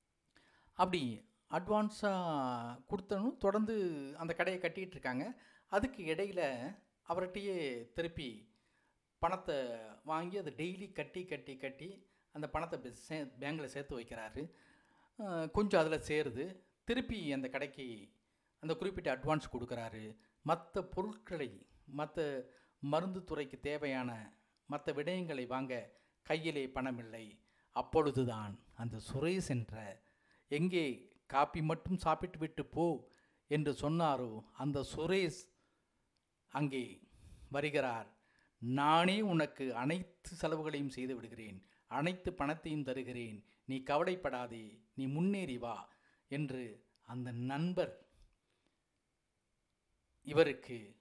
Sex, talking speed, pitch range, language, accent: female, 95 wpm, 125-170 Hz, Tamil, native